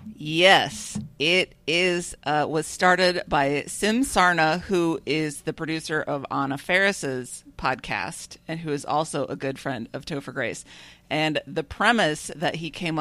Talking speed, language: 150 wpm, English